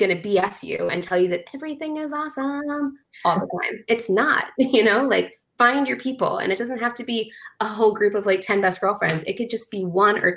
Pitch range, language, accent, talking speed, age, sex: 180-220 Hz, English, American, 245 wpm, 20-39, female